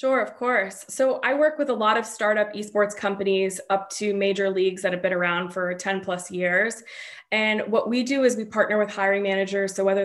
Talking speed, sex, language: 220 wpm, female, English